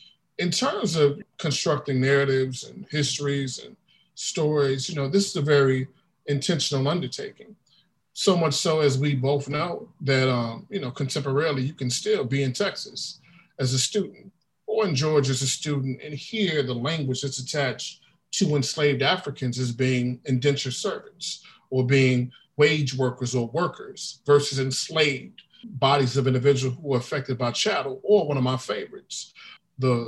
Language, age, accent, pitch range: English, 40-59, American, 130-170 Hz